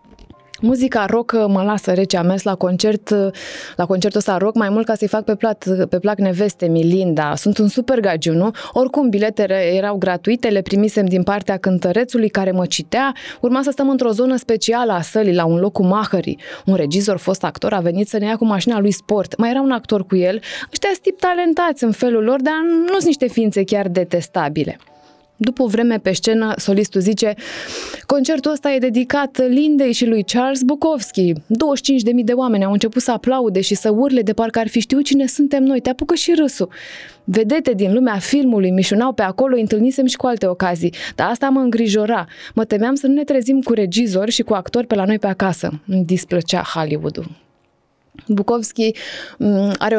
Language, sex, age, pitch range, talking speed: Romanian, female, 20-39, 195-255 Hz, 195 wpm